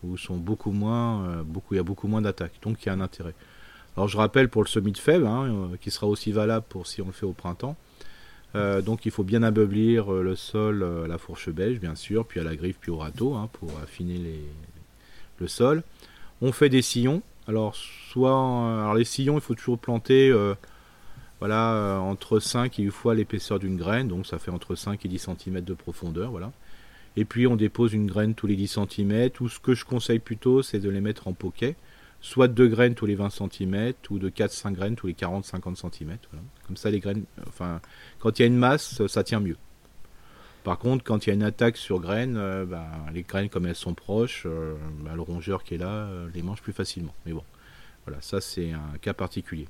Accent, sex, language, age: French, male, French, 40-59